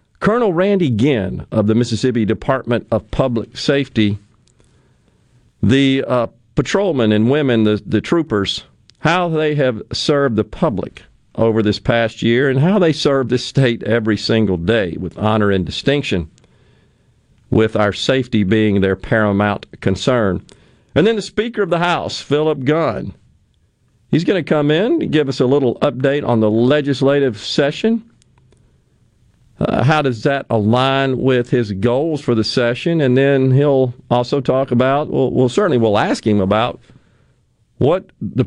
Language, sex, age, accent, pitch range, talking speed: English, male, 50-69, American, 110-145 Hz, 155 wpm